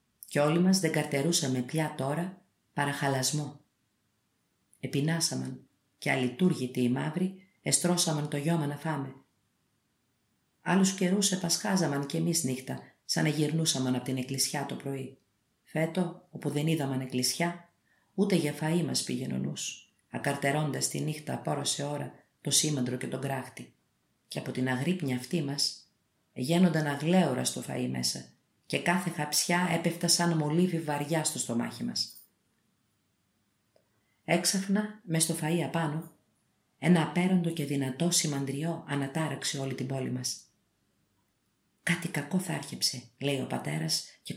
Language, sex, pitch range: Greek, female, 130-165 Hz